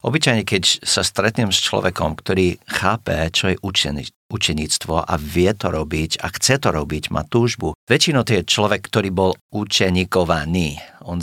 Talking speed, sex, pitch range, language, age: 155 wpm, male, 85-100 Hz, Slovak, 50-69